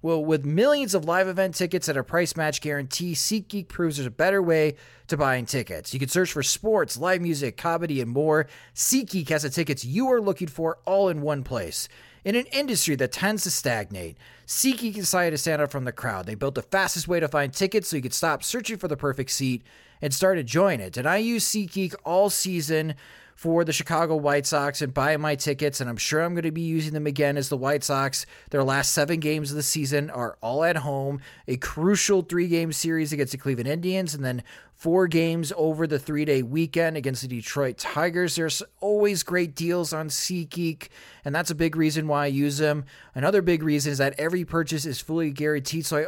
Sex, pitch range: male, 140-175 Hz